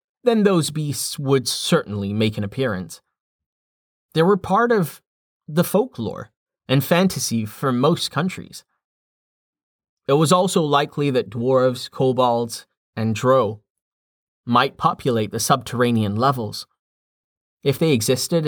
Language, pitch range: English, 115-160 Hz